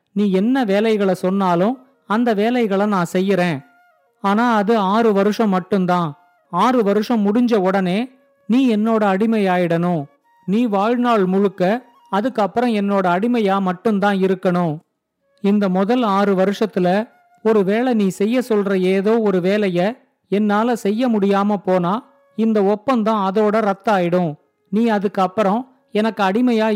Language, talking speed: Tamil, 120 wpm